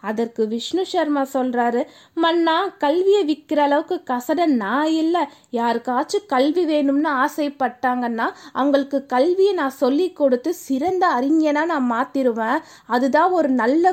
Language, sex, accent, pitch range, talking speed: Tamil, female, native, 255-325 Hz, 115 wpm